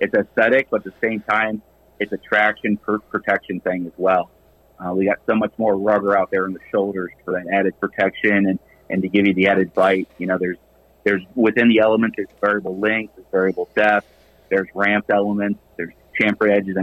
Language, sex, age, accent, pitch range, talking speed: English, male, 30-49, American, 95-105 Hz, 205 wpm